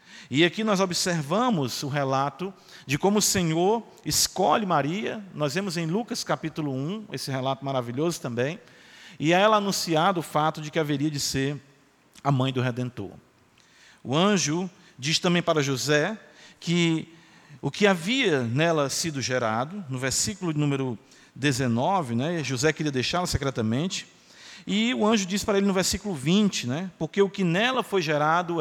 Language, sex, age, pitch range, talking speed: Portuguese, male, 50-69, 145-195 Hz, 155 wpm